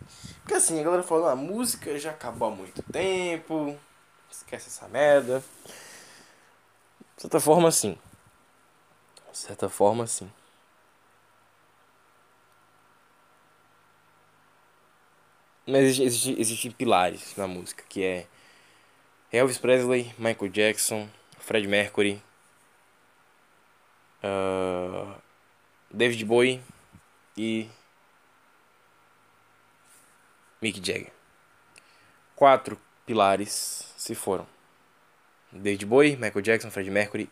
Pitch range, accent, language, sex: 105-145 Hz, Brazilian, Portuguese, male